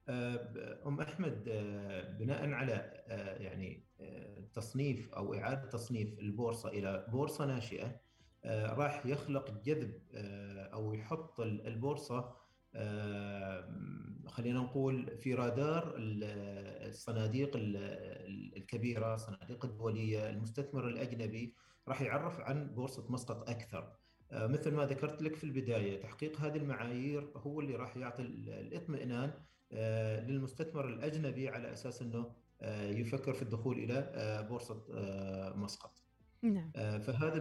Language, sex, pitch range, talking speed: Arabic, male, 110-135 Hz, 100 wpm